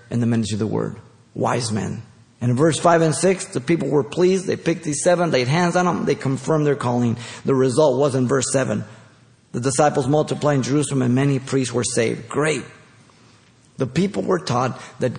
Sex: male